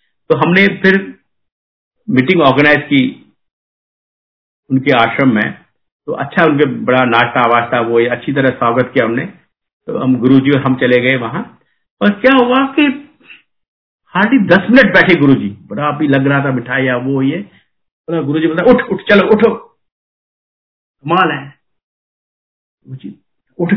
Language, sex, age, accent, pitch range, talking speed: Hindi, male, 50-69, native, 135-195 Hz, 145 wpm